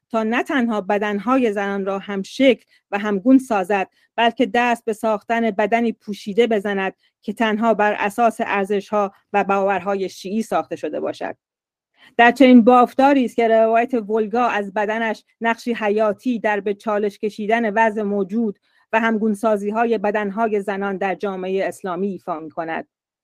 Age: 40-59